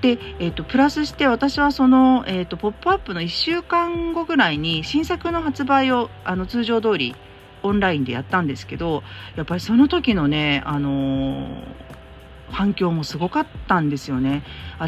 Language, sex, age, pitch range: Japanese, female, 40-59, 150-225 Hz